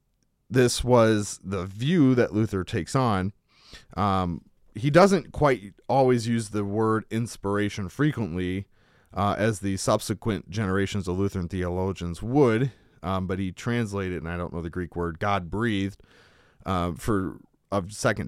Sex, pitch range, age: male, 95-120 Hz, 30-49